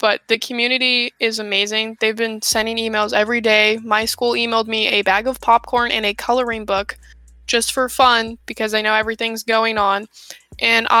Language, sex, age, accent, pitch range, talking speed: English, female, 10-29, American, 205-230 Hz, 180 wpm